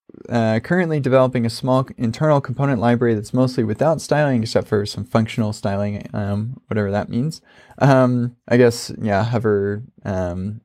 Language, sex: English, male